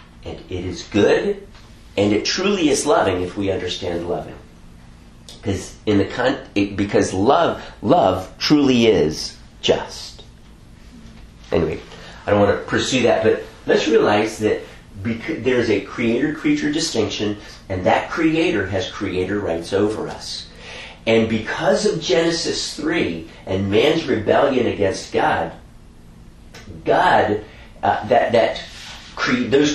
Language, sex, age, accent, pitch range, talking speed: English, male, 40-59, American, 90-125 Hz, 125 wpm